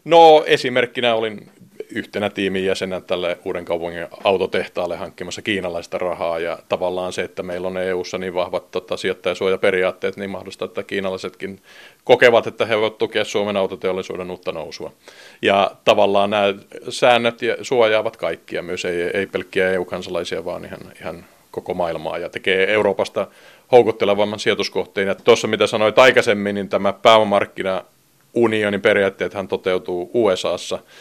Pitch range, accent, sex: 90-115 Hz, native, male